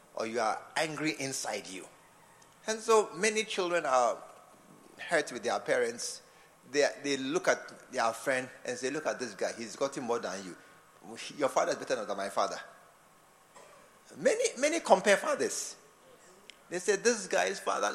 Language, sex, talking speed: English, male, 165 wpm